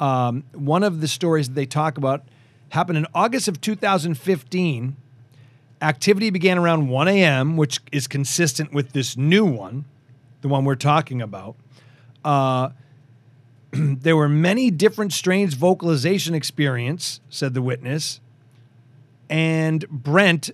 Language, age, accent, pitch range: English, 40-59, American, 130-160 Hz